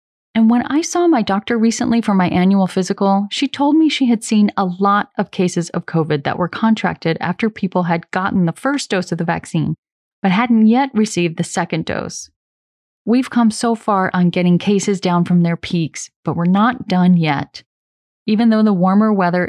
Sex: female